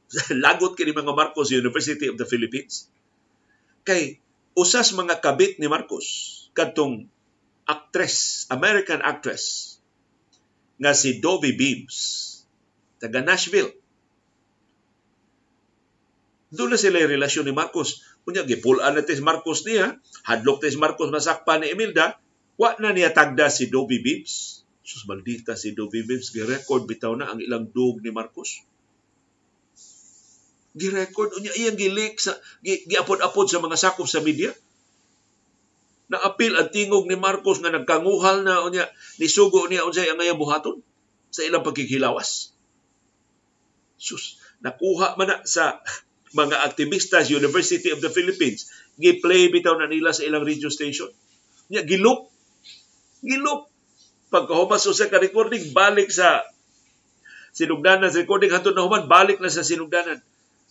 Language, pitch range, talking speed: Filipino, 150-215 Hz, 125 wpm